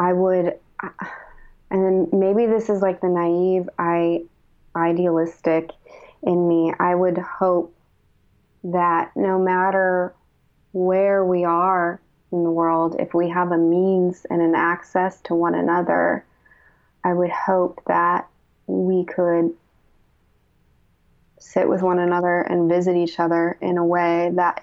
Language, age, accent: English, 20-39, American